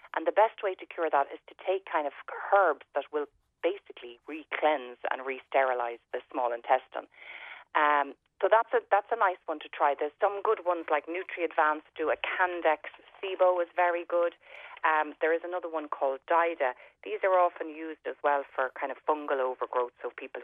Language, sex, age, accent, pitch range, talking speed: English, female, 30-49, Irish, 140-195 Hz, 190 wpm